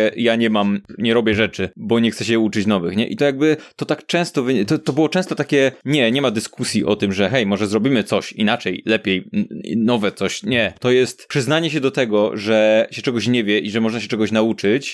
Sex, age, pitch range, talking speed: male, 20-39, 110-140 Hz, 230 wpm